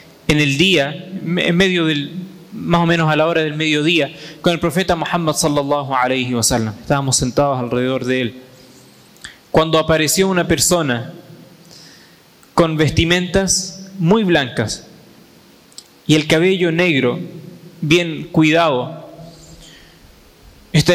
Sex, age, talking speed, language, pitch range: male, 20-39, 115 wpm, Spanish, 140-175 Hz